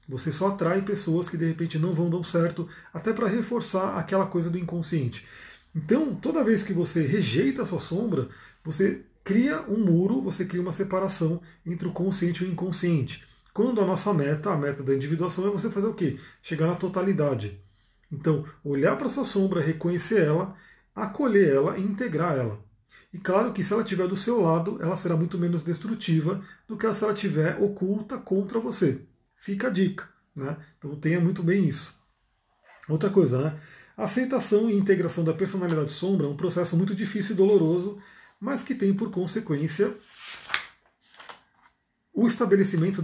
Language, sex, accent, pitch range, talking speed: Portuguese, male, Brazilian, 160-200 Hz, 175 wpm